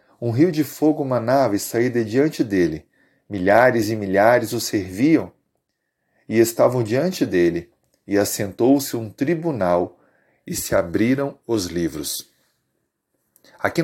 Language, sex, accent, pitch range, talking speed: Portuguese, male, Brazilian, 105-135 Hz, 125 wpm